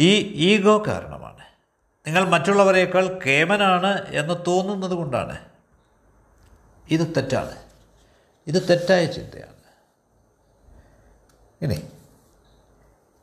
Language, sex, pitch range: Malayalam, male, 125-185 Hz